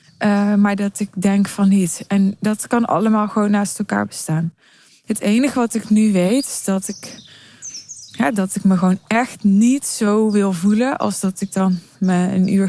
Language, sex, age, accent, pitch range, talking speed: Dutch, female, 20-39, Dutch, 175-215 Hz, 195 wpm